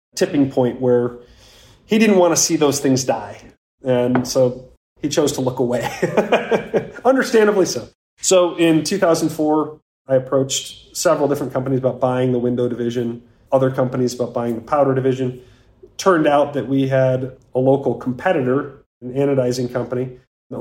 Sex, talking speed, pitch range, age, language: male, 150 wpm, 125-150 Hz, 40-59, English